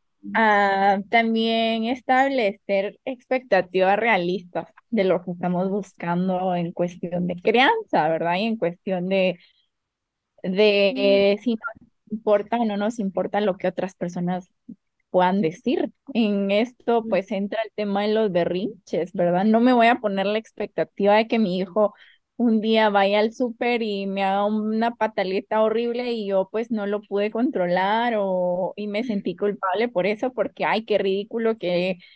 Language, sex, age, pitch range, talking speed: Spanish, female, 20-39, 190-225 Hz, 160 wpm